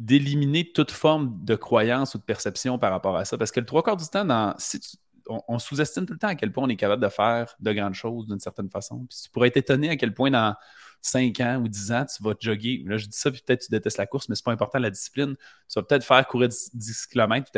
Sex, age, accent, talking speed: male, 30-49, Canadian, 280 wpm